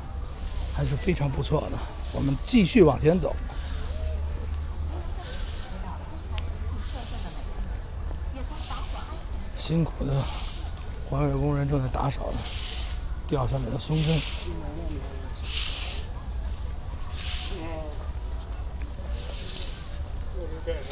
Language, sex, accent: Chinese, male, native